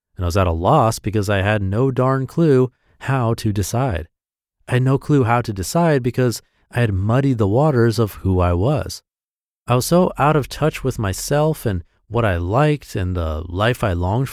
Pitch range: 95-130 Hz